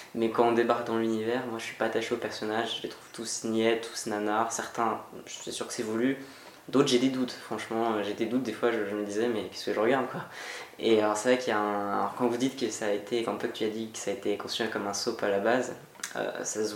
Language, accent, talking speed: French, French, 290 wpm